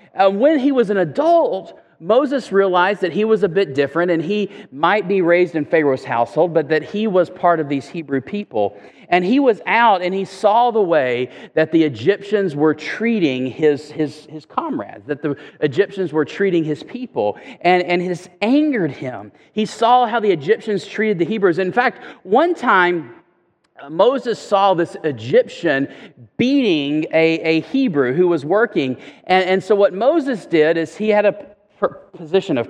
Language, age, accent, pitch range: English, 40-59, American, 150-215 Hz